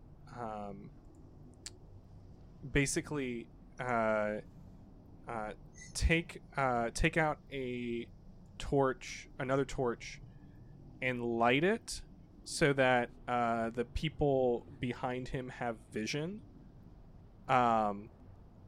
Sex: male